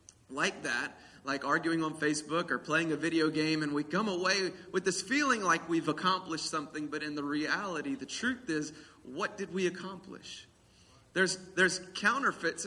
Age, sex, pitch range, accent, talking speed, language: 30-49, male, 150-190 Hz, American, 170 wpm, English